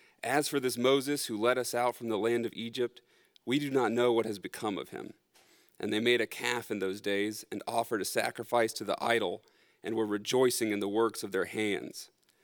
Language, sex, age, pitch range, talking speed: English, male, 40-59, 110-130 Hz, 220 wpm